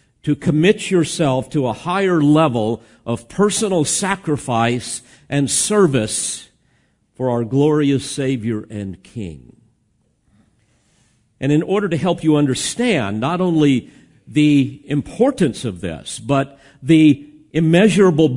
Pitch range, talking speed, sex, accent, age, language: 125-160 Hz, 110 wpm, male, American, 50-69, English